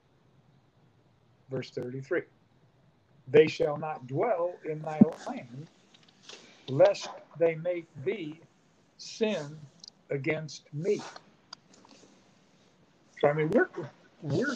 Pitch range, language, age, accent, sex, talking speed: 140-180 Hz, English, 60-79, American, male, 90 wpm